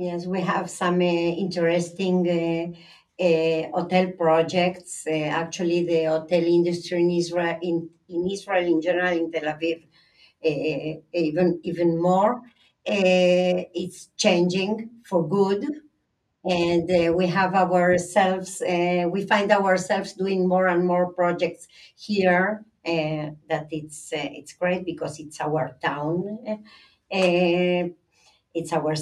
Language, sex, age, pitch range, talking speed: English, female, 50-69, 165-185 Hz, 130 wpm